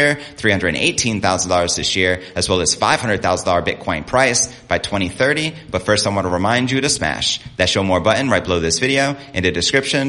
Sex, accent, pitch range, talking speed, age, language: male, American, 90-120 Hz, 230 wpm, 30-49, English